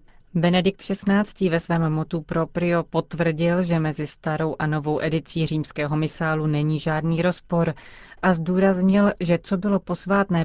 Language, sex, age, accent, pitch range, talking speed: Czech, female, 30-49, native, 155-180 Hz, 140 wpm